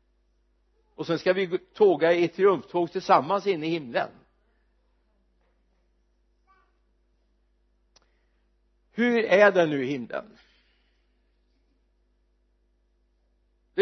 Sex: male